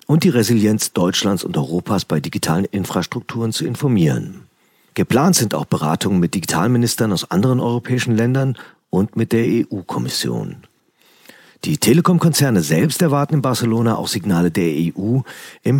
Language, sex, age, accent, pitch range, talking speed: German, male, 40-59, German, 95-130 Hz, 135 wpm